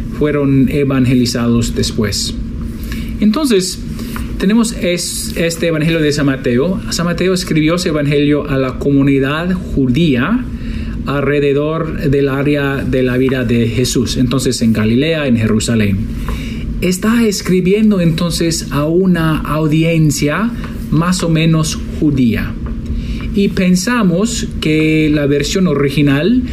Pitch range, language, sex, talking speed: 125-165 Hz, Spanish, male, 110 wpm